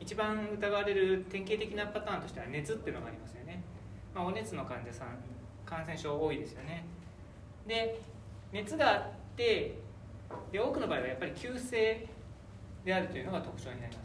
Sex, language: male, Japanese